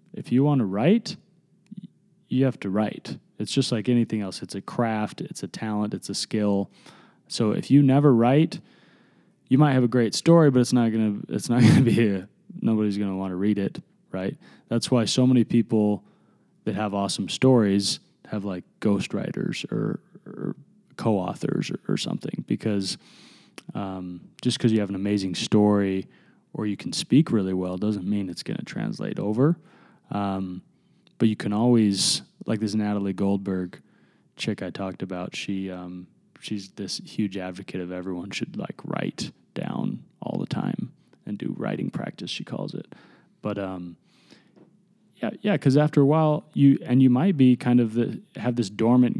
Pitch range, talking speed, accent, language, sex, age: 100-125 Hz, 180 wpm, American, English, male, 20-39